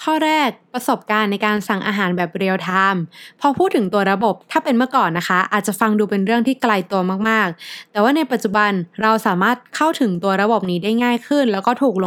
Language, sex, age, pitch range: Thai, female, 20-39, 190-245 Hz